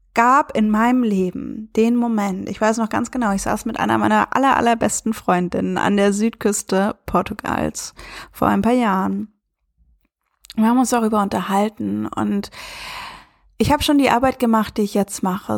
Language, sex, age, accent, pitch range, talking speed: German, female, 20-39, German, 205-235 Hz, 165 wpm